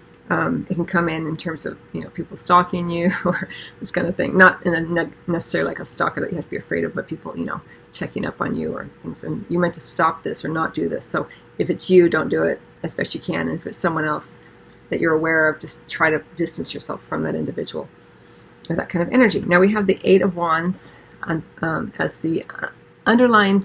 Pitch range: 160-185 Hz